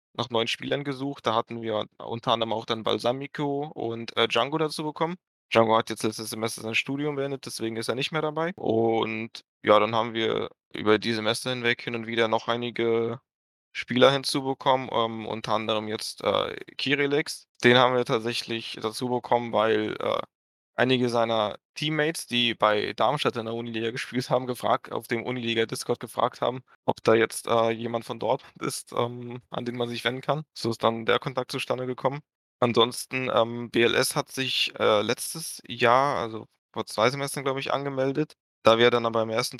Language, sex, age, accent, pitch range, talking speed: German, male, 20-39, German, 115-135 Hz, 185 wpm